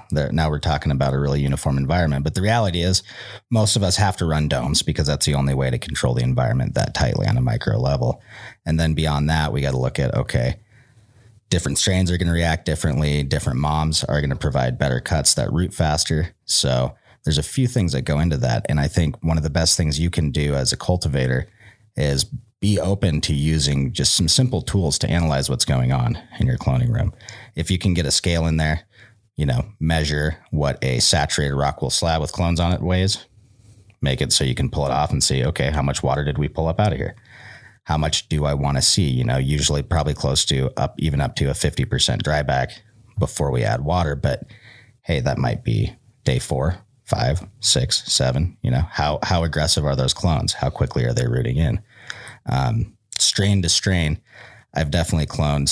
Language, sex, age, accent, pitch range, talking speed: English, male, 30-49, American, 70-100 Hz, 215 wpm